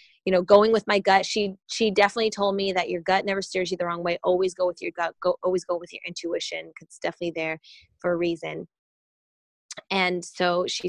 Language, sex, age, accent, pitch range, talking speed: English, female, 20-39, American, 175-200 Hz, 225 wpm